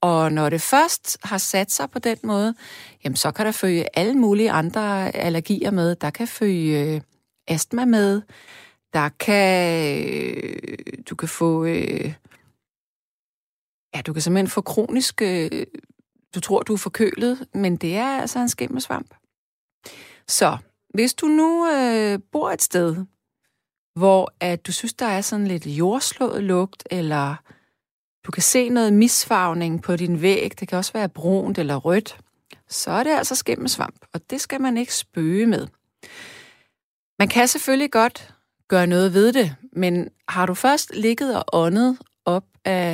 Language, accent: Danish, native